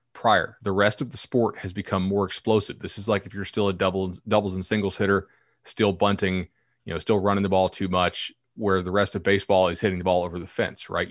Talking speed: 245 wpm